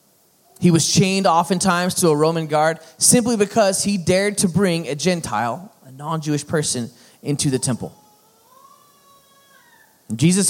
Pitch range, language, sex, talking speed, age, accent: 120-170 Hz, English, male, 130 wpm, 20-39, American